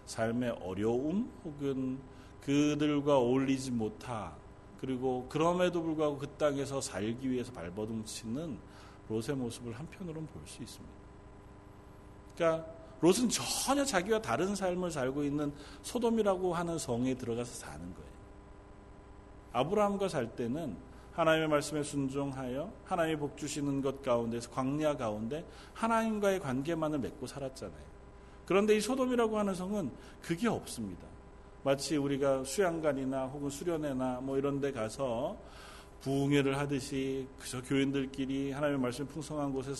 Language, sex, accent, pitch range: Korean, male, native, 110-160 Hz